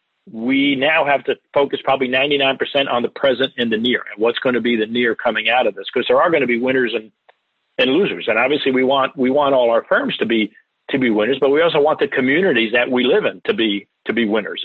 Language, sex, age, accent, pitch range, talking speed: English, male, 50-69, American, 120-145 Hz, 260 wpm